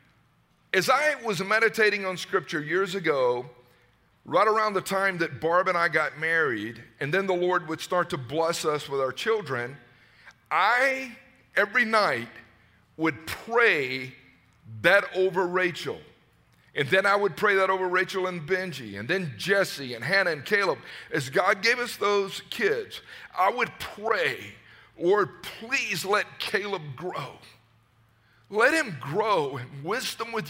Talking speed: 150 wpm